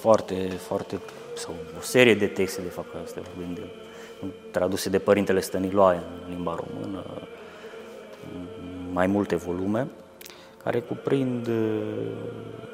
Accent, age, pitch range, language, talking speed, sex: native, 20-39, 90-115 Hz, Romanian, 110 wpm, male